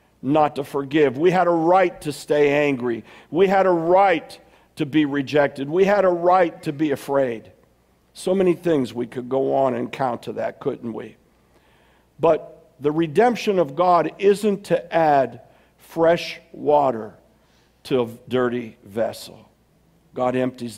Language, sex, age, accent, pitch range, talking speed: English, male, 50-69, American, 135-180 Hz, 155 wpm